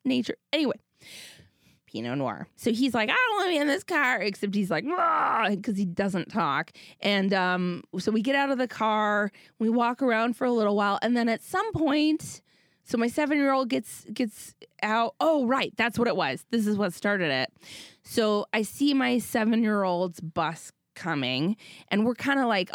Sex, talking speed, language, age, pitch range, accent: female, 200 wpm, English, 20-39, 175-240 Hz, American